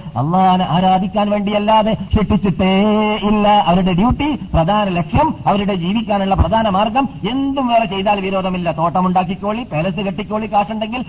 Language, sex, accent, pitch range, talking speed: Malayalam, male, native, 155-205 Hz, 115 wpm